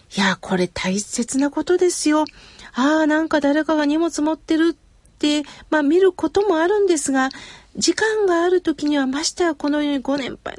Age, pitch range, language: 40-59, 235-300 Hz, Japanese